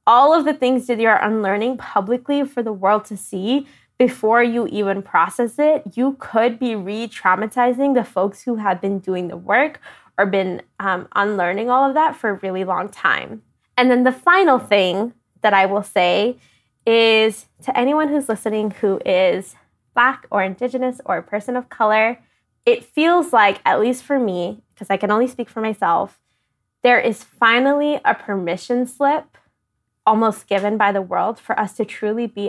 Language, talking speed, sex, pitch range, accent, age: English, 175 wpm, female, 195-255 Hz, American, 10-29